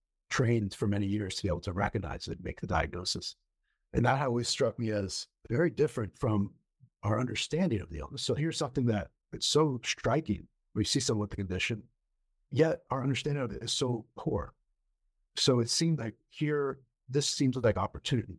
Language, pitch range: English, 100-130 Hz